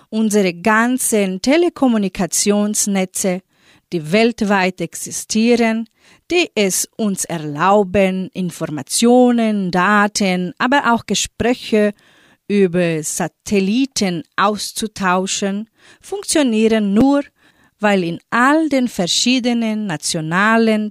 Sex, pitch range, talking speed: female, 185-245 Hz, 75 wpm